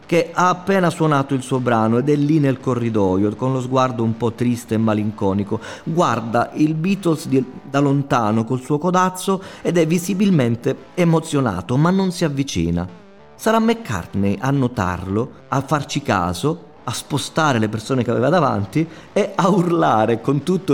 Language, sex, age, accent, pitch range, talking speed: Italian, male, 30-49, native, 105-155 Hz, 160 wpm